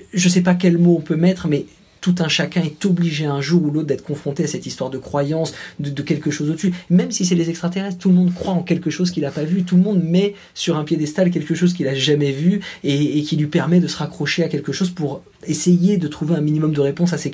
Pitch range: 145-180 Hz